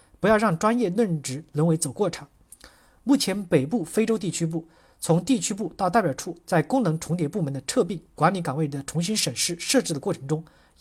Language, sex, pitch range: Chinese, male, 150-200 Hz